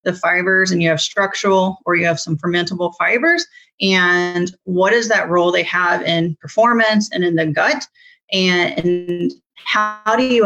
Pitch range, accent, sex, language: 175-220 Hz, American, female, Chinese